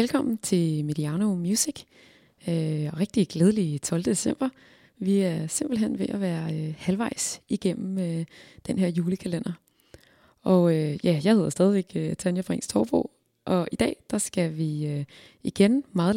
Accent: native